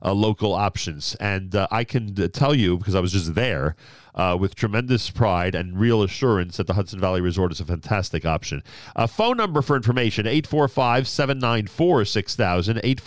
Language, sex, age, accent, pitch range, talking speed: English, male, 40-59, American, 95-125 Hz, 170 wpm